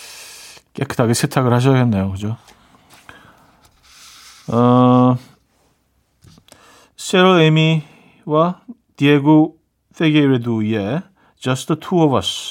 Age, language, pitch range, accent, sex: 40-59, Korean, 120-165 Hz, native, male